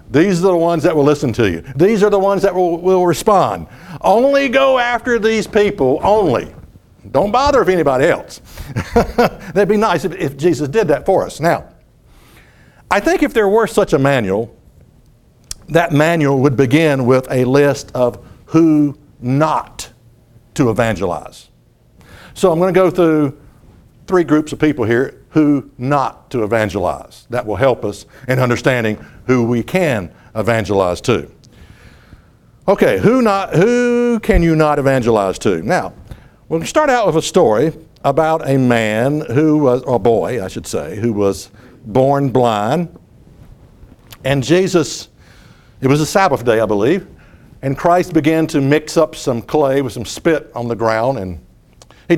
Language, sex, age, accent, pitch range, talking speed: English, male, 60-79, American, 125-175 Hz, 160 wpm